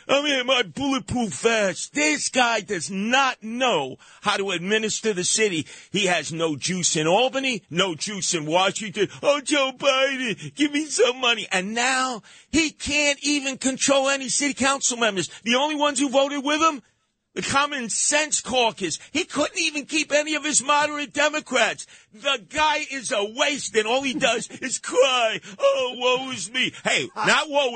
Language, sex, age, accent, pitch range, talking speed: English, male, 50-69, American, 210-285 Hz, 175 wpm